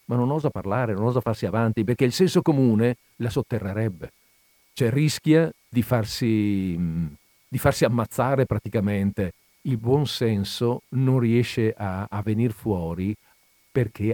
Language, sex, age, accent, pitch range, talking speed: Italian, male, 50-69, native, 105-145 Hz, 135 wpm